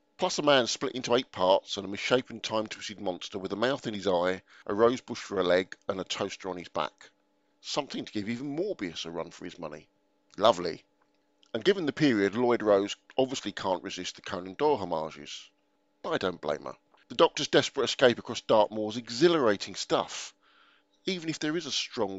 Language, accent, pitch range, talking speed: English, British, 95-135 Hz, 195 wpm